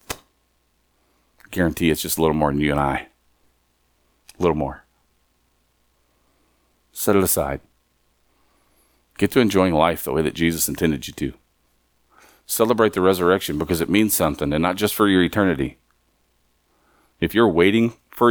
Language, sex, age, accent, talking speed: English, male, 40-59, American, 145 wpm